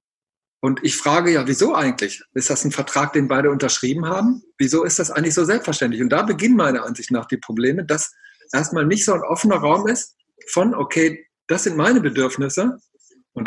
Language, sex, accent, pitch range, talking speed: German, male, German, 145-185 Hz, 190 wpm